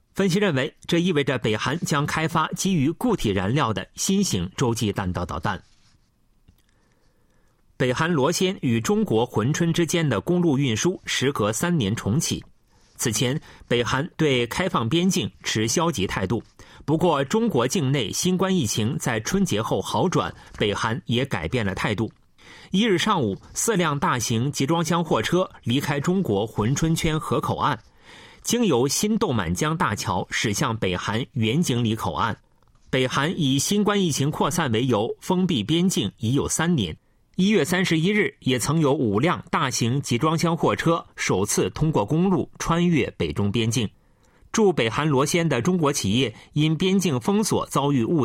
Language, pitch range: Chinese, 120-175 Hz